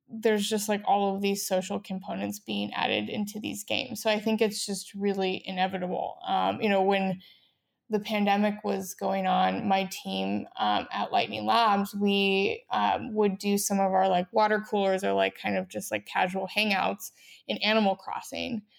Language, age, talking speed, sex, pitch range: English, 20-39, 180 wpm, female, 190-215 Hz